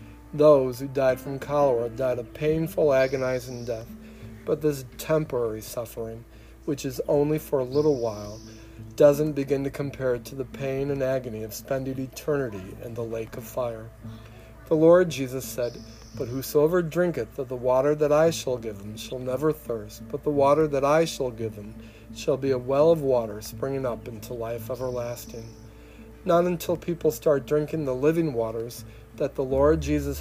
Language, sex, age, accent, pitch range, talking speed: English, male, 40-59, American, 115-145 Hz, 175 wpm